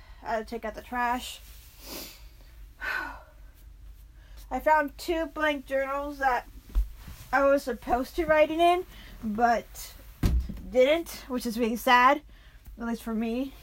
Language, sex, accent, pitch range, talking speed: English, female, American, 235-290 Hz, 125 wpm